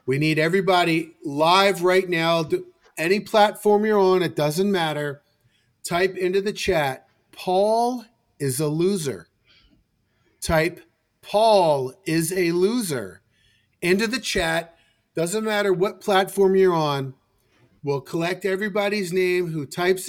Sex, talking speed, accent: male, 120 wpm, American